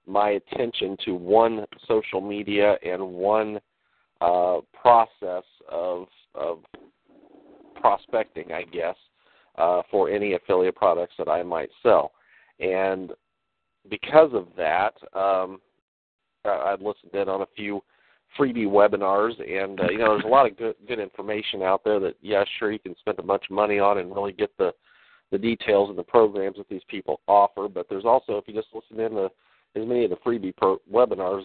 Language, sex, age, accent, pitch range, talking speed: English, male, 40-59, American, 95-110 Hz, 175 wpm